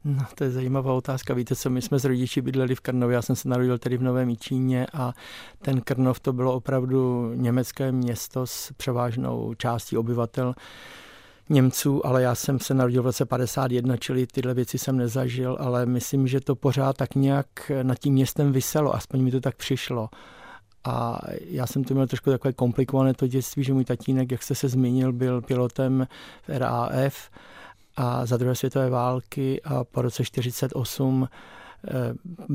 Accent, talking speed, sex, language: native, 170 wpm, male, Czech